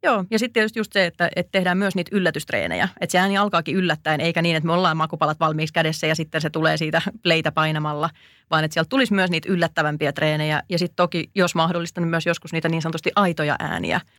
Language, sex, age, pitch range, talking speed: Finnish, female, 30-49, 155-180 Hz, 215 wpm